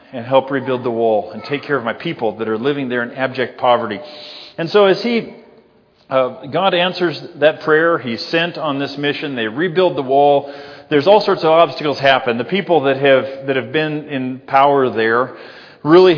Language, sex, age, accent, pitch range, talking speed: English, male, 40-59, American, 130-175 Hz, 195 wpm